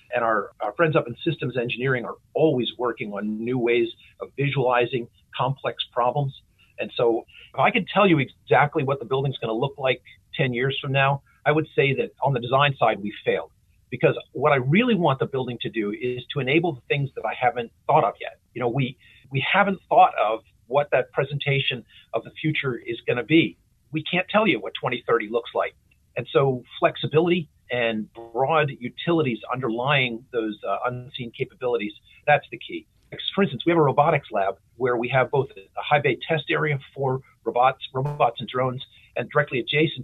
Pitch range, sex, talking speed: 120-150 Hz, male, 195 wpm